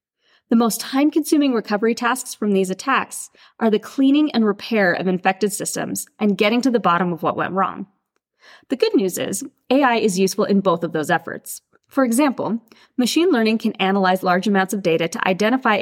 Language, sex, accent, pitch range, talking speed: English, female, American, 185-250 Hz, 185 wpm